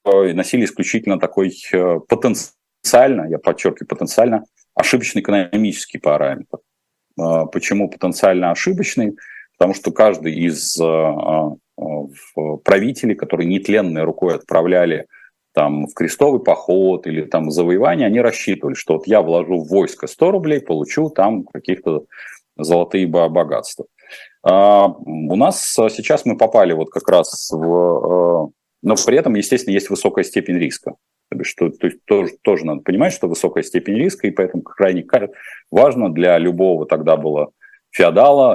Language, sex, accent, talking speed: Russian, male, native, 130 wpm